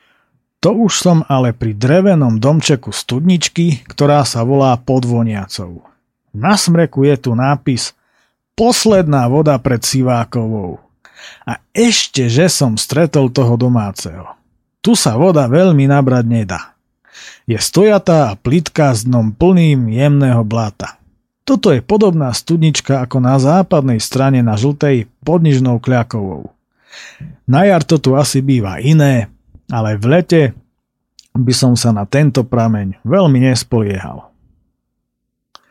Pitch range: 120-155 Hz